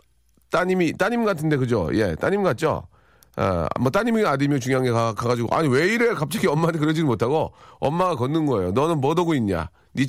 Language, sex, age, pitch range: Korean, male, 40-59, 125-185 Hz